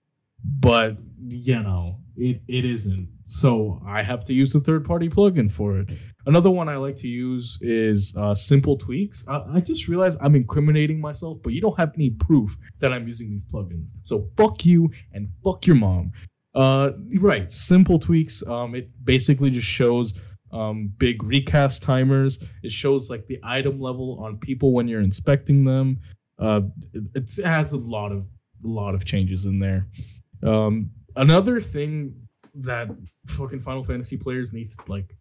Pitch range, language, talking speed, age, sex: 105-140 Hz, English, 170 wpm, 20-39, male